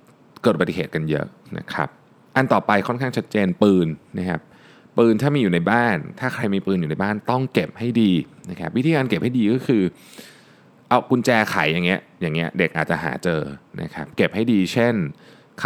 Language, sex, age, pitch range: Thai, male, 20-39, 90-120 Hz